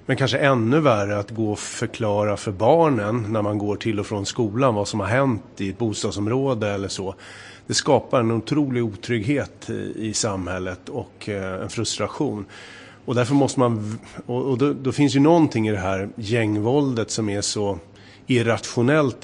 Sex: male